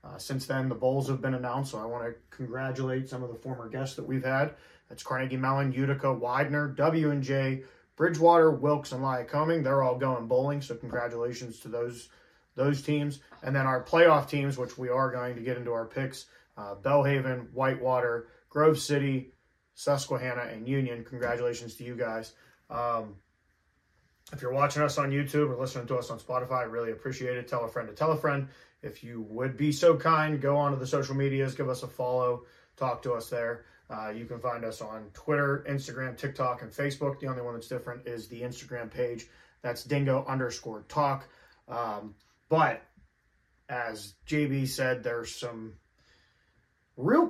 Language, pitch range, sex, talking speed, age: English, 120-140 Hz, male, 180 wpm, 30-49